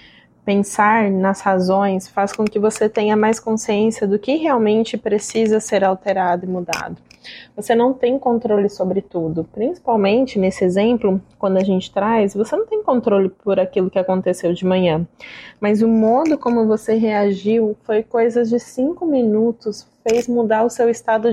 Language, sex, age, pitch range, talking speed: Portuguese, female, 20-39, 190-225 Hz, 160 wpm